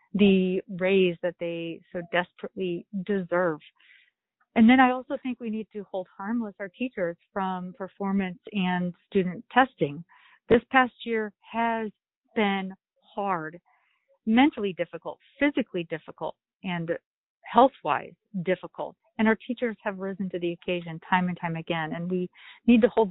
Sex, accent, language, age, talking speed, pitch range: female, American, English, 40-59, 140 wpm, 175-225 Hz